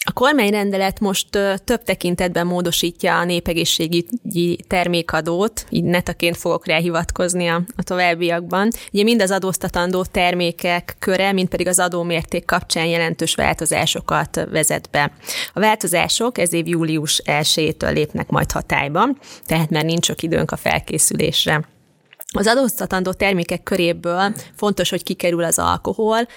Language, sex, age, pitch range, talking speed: Hungarian, female, 20-39, 165-195 Hz, 125 wpm